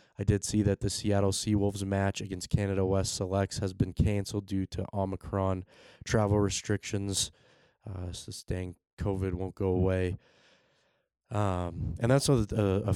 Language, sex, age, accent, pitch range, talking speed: English, male, 20-39, American, 95-105 Hz, 155 wpm